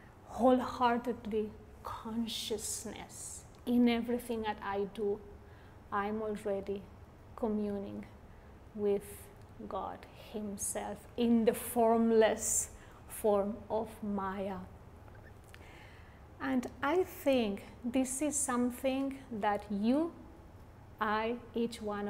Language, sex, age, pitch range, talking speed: English, female, 30-49, 205-240 Hz, 80 wpm